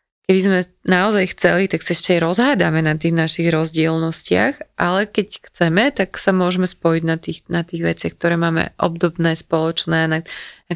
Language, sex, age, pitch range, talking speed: Slovak, female, 20-39, 170-195 Hz, 165 wpm